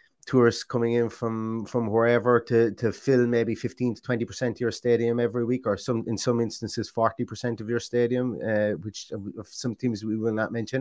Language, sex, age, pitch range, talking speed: English, male, 30-49, 110-140 Hz, 210 wpm